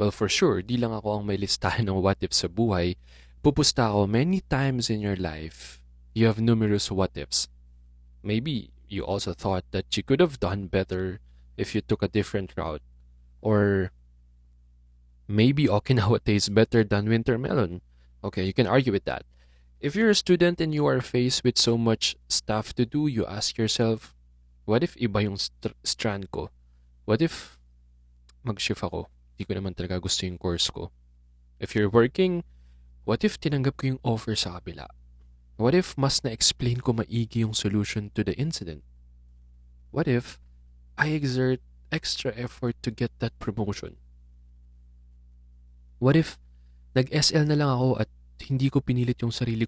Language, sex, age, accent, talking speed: English, male, 20-39, Filipino, 155 wpm